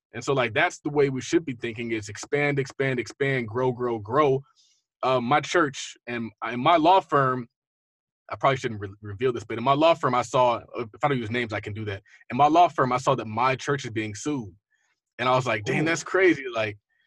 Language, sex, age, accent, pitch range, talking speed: English, male, 20-39, American, 120-155 Hz, 230 wpm